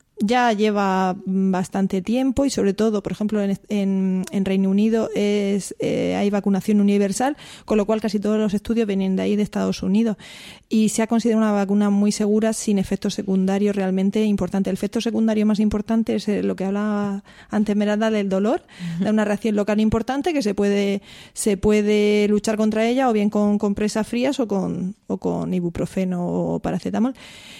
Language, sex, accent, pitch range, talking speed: Spanish, female, Spanish, 195-220 Hz, 185 wpm